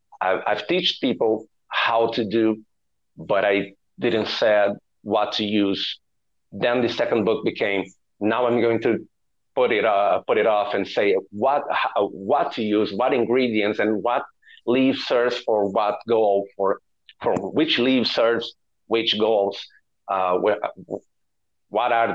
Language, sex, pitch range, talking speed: English, male, 105-135 Hz, 150 wpm